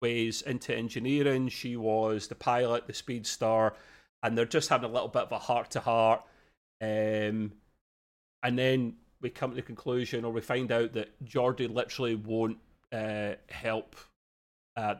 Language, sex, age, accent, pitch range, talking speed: English, male, 30-49, British, 105-125 Hz, 165 wpm